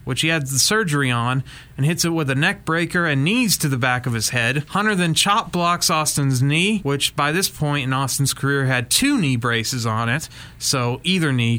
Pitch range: 135-185 Hz